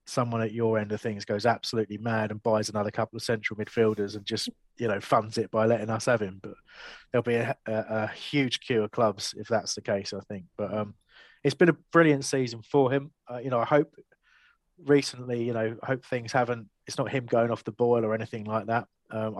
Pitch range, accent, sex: 105-120 Hz, British, male